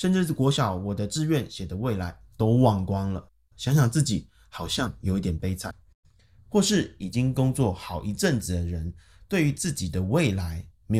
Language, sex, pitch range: Chinese, male, 90-135 Hz